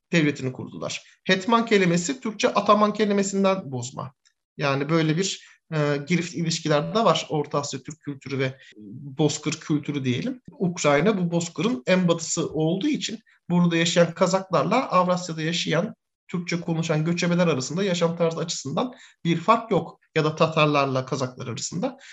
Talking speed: 135 wpm